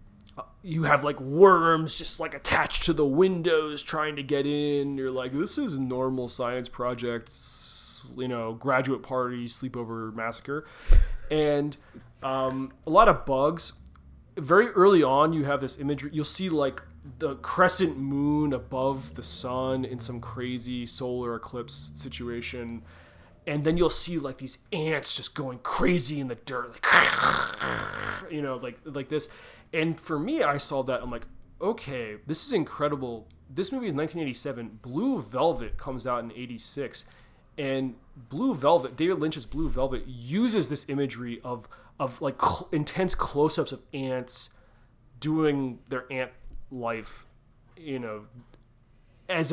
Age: 20-39